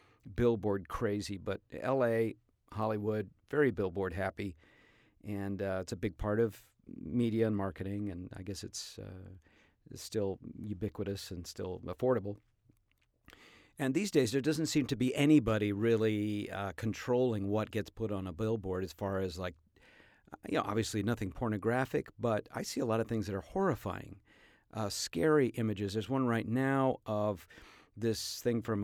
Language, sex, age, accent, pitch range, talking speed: English, male, 50-69, American, 100-120 Hz, 160 wpm